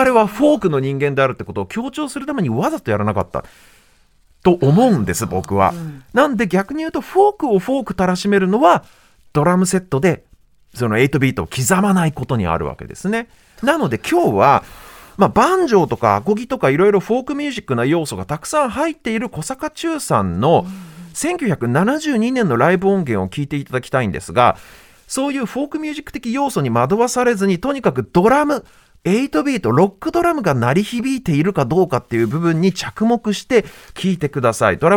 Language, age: Japanese, 40-59